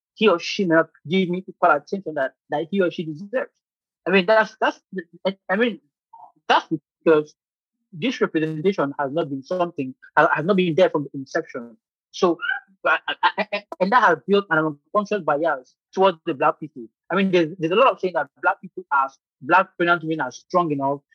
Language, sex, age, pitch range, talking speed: English, male, 30-49, 155-195 Hz, 185 wpm